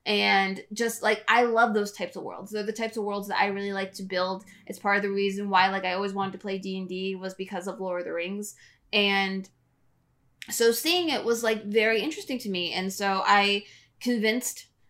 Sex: female